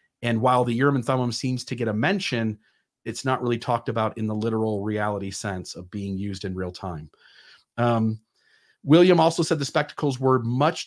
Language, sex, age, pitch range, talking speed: English, male, 40-59, 110-145 Hz, 195 wpm